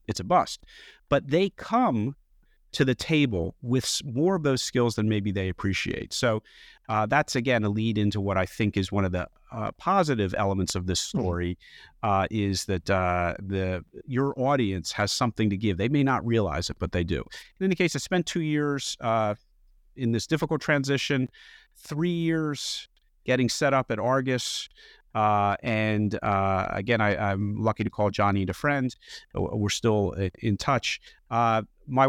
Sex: male